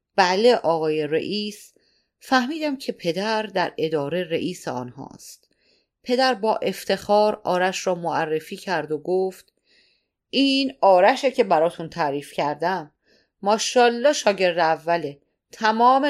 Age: 40-59